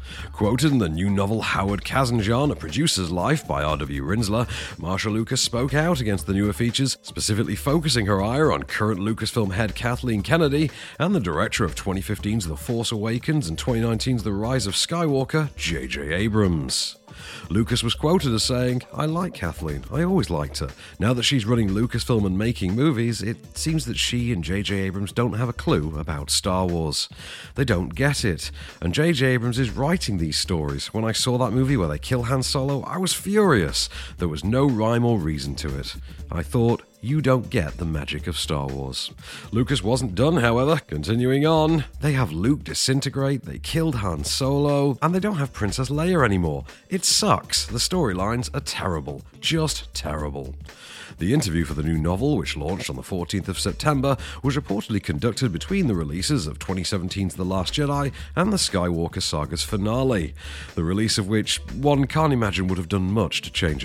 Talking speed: 185 wpm